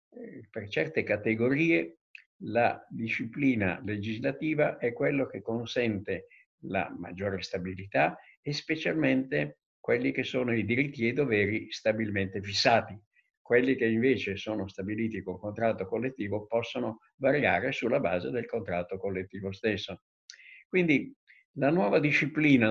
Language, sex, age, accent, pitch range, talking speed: Italian, male, 60-79, native, 110-140 Hz, 120 wpm